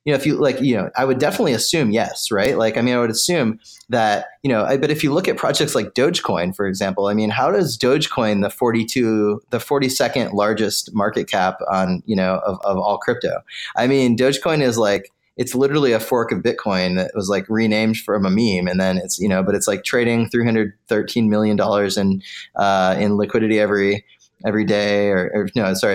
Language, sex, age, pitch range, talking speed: English, male, 20-39, 100-120 Hz, 215 wpm